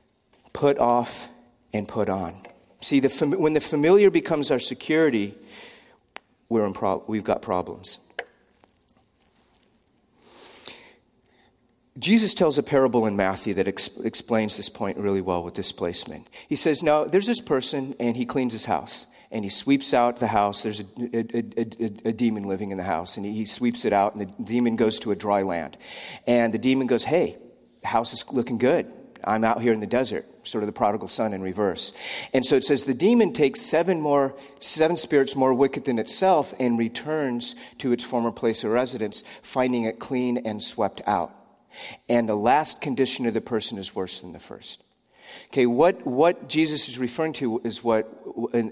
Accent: American